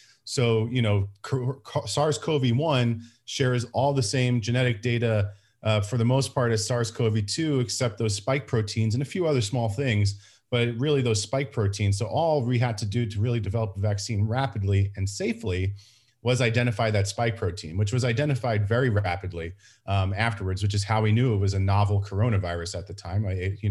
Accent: American